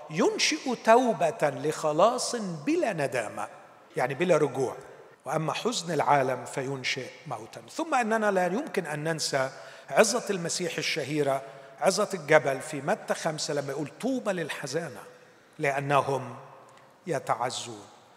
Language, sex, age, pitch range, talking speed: Arabic, male, 40-59, 145-205 Hz, 110 wpm